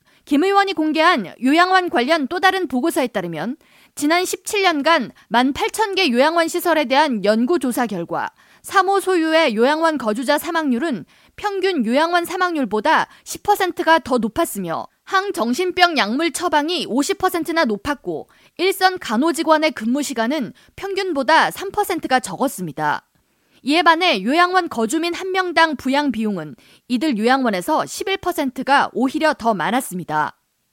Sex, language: female, Korean